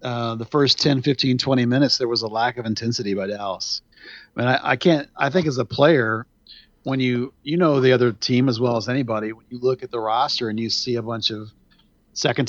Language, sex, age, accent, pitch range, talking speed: English, male, 40-59, American, 115-130 Hz, 240 wpm